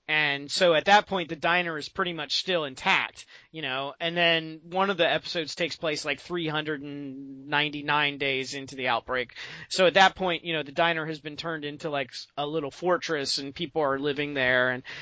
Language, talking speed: English, 200 wpm